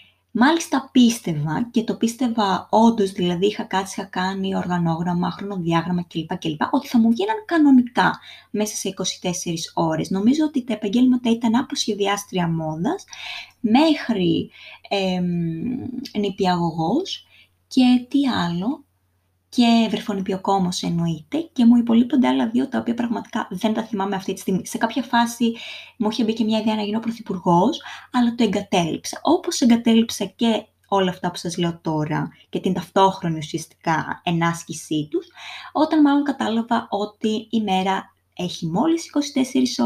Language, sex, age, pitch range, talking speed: Greek, female, 20-39, 180-250 Hz, 145 wpm